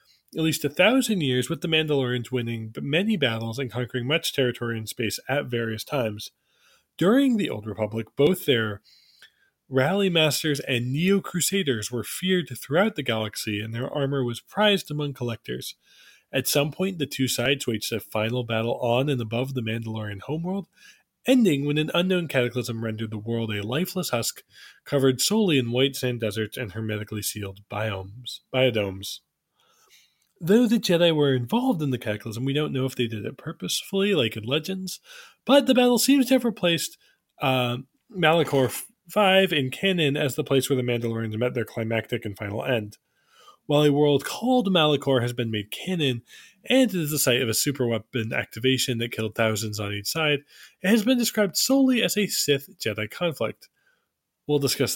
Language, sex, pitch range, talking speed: English, male, 115-170 Hz, 170 wpm